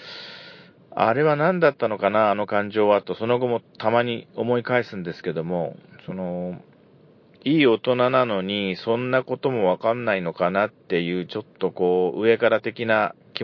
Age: 40-59